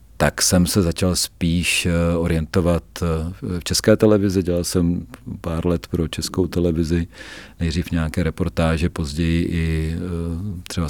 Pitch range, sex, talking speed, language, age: 80-95 Hz, male, 120 wpm, Czech, 40-59